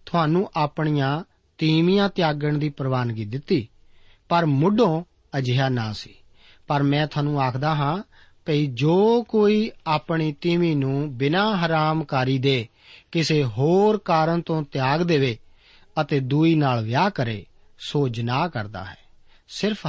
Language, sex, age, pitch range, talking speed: Punjabi, male, 50-69, 130-170 Hz, 125 wpm